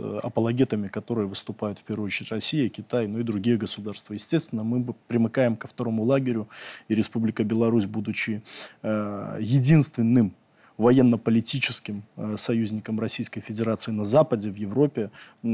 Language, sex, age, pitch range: Russian, male, 20-39, 110-125 Hz